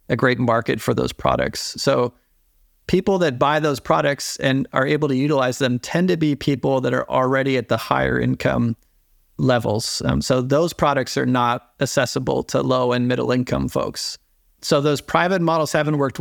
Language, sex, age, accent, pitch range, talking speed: English, male, 40-59, American, 120-145 Hz, 180 wpm